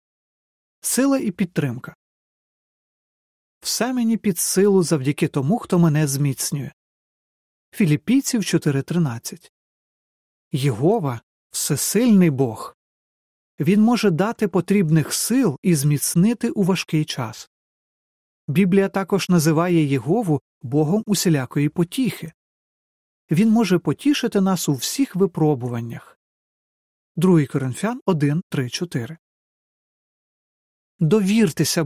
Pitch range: 150-205 Hz